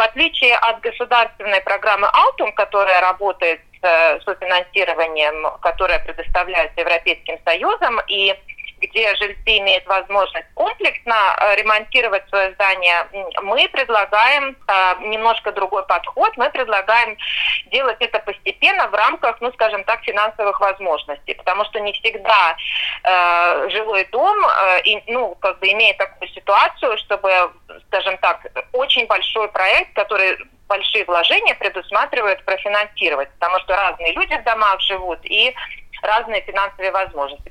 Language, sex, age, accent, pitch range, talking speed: Russian, female, 30-49, native, 180-230 Hz, 125 wpm